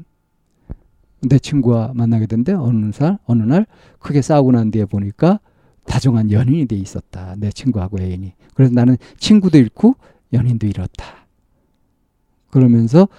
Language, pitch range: Korean, 115-165 Hz